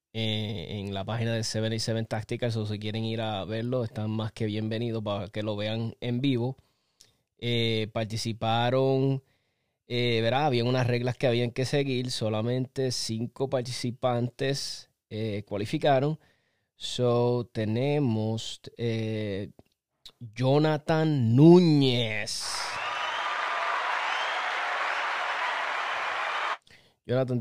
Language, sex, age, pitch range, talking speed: Spanish, male, 20-39, 110-130 Hz, 100 wpm